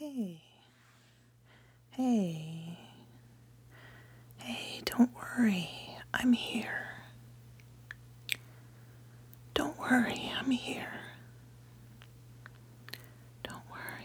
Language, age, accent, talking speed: English, 40-59, American, 55 wpm